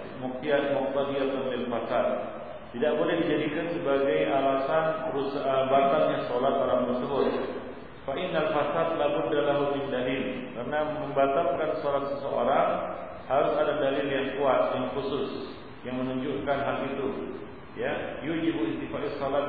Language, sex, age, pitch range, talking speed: Malay, male, 40-59, 125-140 Hz, 115 wpm